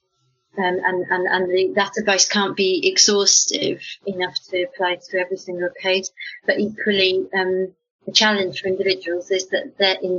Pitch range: 185-205 Hz